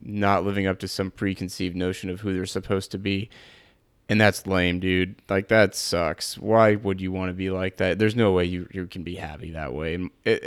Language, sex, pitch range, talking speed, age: English, male, 95-110 Hz, 225 wpm, 20-39